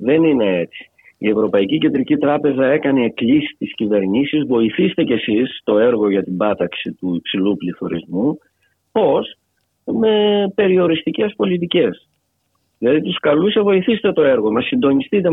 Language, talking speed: Greek, 135 wpm